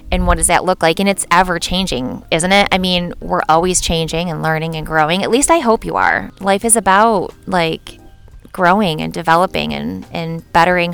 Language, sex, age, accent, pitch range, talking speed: English, female, 20-39, American, 165-210 Hz, 205 wpm